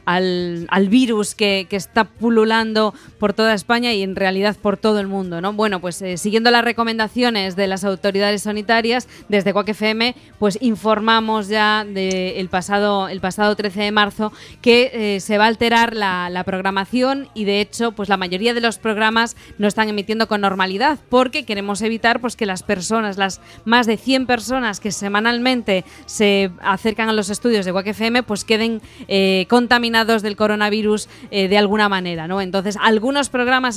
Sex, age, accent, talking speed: female, 20-39, Spanish, 170 wpm